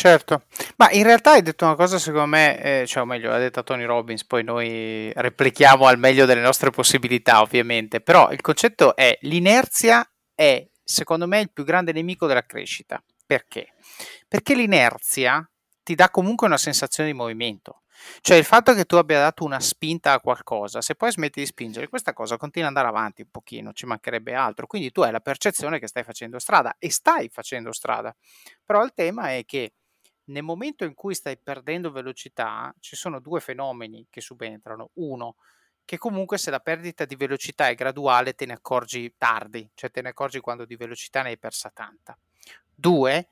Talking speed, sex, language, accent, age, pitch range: 185 wpm, male, Italian, native, 30-49, 120-165 Hz